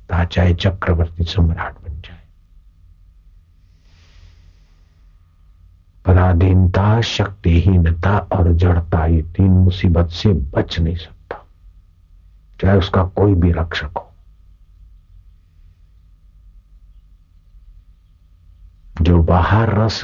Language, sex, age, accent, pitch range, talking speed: Hindi, male, 60-79, native, 85-95 Hz, 75 wpm